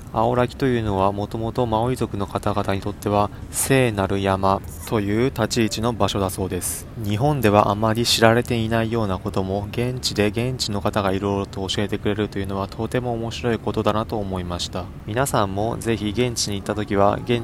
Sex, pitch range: male, 100-115 Hz